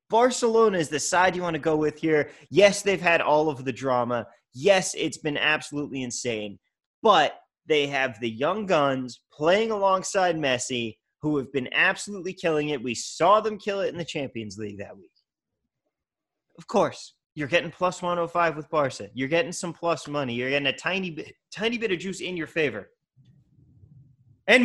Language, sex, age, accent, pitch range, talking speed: English, male, 30-49, American, 135-205 Hz, 180 wpm